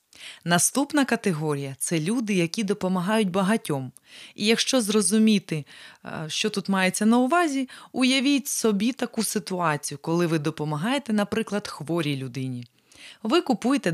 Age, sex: 20-39, female